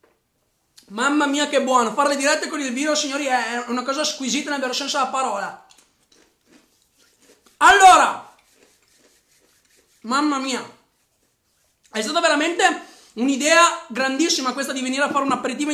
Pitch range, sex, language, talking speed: 270-310 Hz, male, Italian, 130 wpm